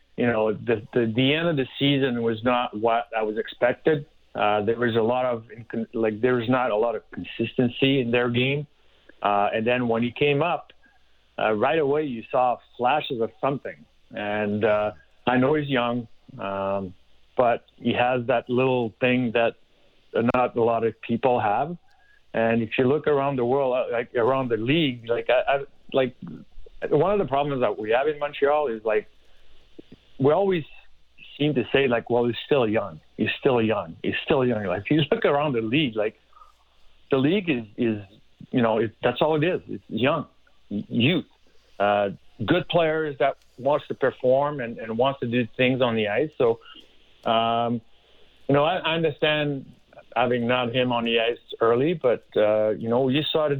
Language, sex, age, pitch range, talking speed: English, male, 50-69, 115-140 Hz, 190 wpm